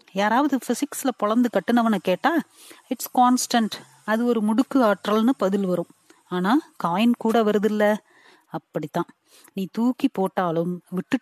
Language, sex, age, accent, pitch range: Tamil, female, 30-49, native, 190-265 Hz